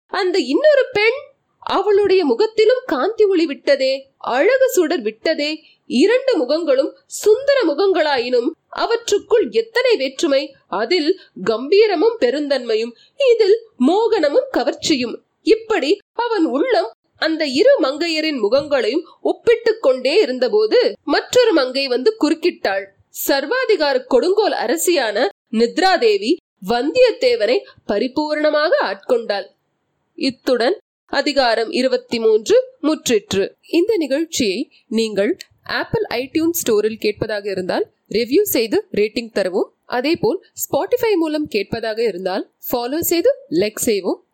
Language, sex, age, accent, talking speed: Tamil, female, 20-39, native, 95 wpm